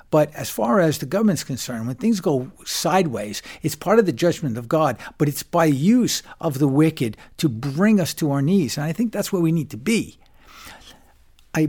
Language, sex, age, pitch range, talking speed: English, male, 60-79, 130-175 Hz, 210 wpm